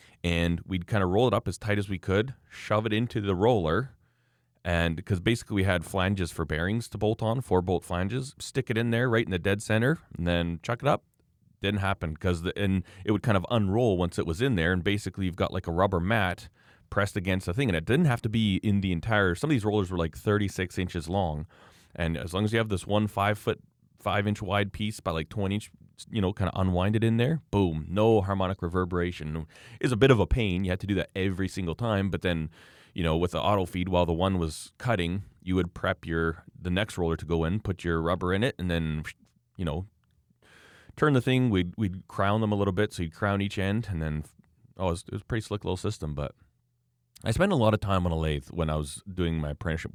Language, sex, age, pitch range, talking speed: English, male, 30-49, 85-105 Hz, 250 wpm